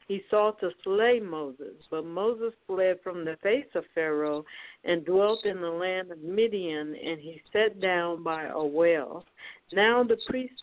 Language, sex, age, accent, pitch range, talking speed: English, female, 60-79, American, 170-215 Hz, 170 wpm